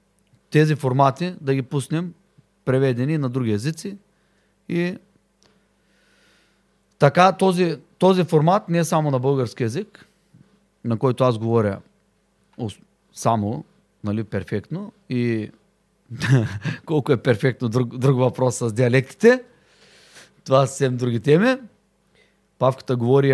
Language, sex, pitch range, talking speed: Bulgarian, male, 130-180 Hz, 115 wpm